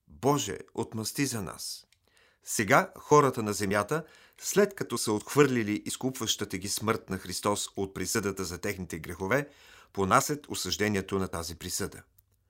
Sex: male